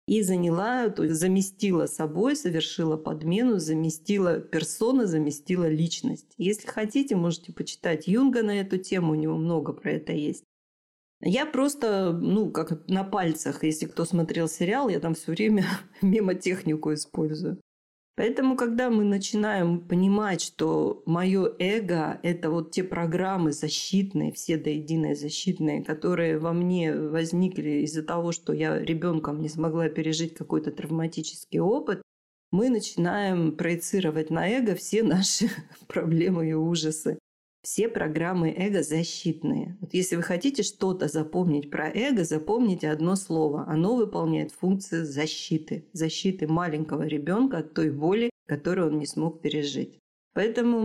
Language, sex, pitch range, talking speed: Russian, female, 160-195 Hz, 135 wpm